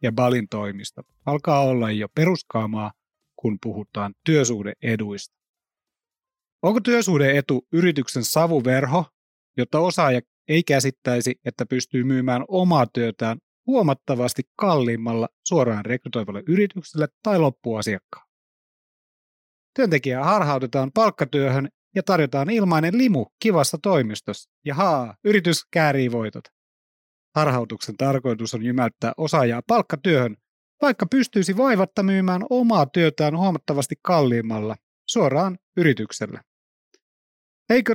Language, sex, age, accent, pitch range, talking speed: Finnish, male, 30-49, native, 125-180 Hz, 95 wpm